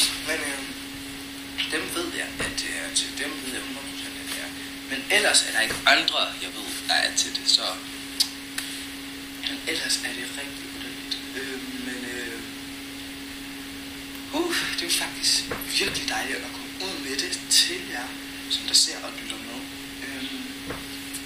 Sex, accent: male, native